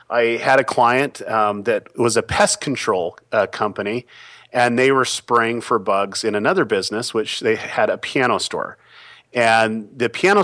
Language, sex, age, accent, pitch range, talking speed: English, male, 40-59, American, 105-130 Hz, 170 wpm